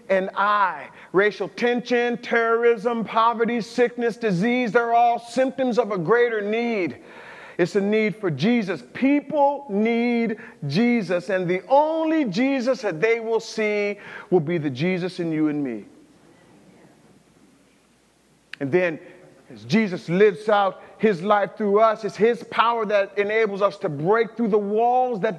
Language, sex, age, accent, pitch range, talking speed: English, male, 40-59, American, 180-235 Hz, 145 wpm